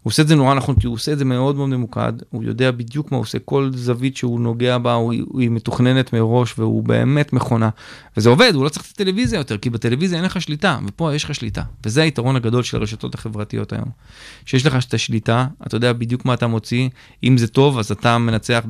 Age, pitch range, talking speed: 20-39, 115-150 Hz, 240 wpm